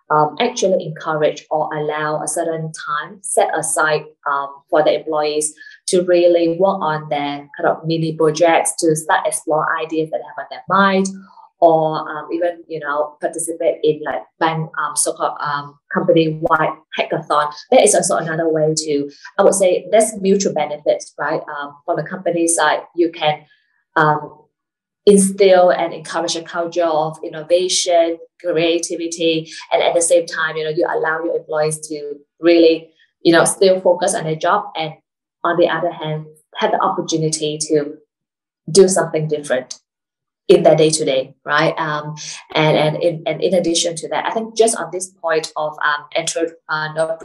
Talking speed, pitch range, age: 165 wpm, 155-185 Hz, 20-39